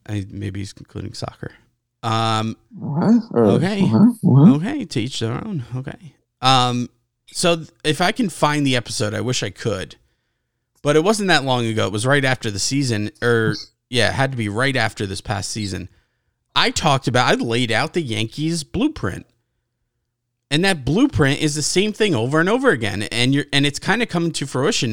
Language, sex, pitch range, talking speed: English, male, 115-155 Hz, 185 wpm